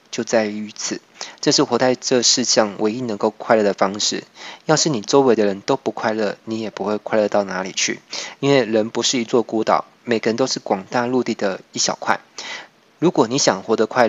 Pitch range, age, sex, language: 105-125 Hz, 20-39, male, Chinese